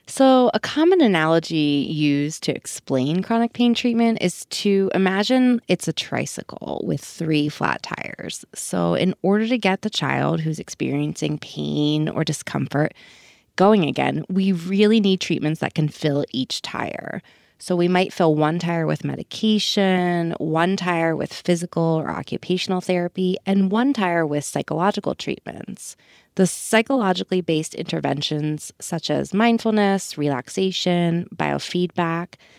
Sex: female